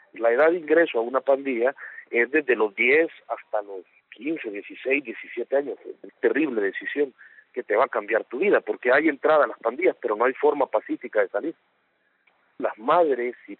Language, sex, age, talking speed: Spanish, male, 40-59, 195 wpm